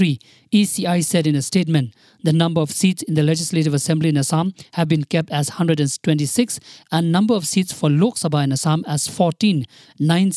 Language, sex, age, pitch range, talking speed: English, male, 50-69, 155-185 Hz, 185 wpm